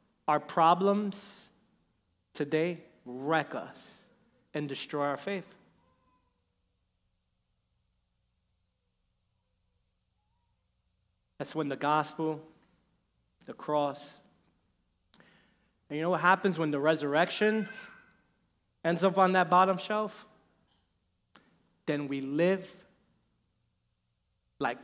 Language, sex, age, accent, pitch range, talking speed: English, male, 30-49, American, 135-180 Hz, 80 wpm